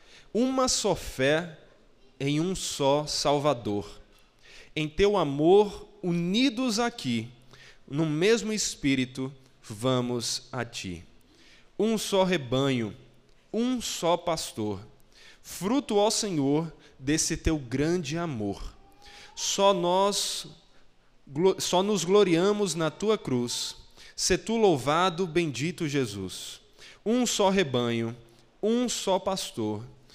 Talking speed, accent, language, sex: 100 wpm, Brazilian, Portuguese, male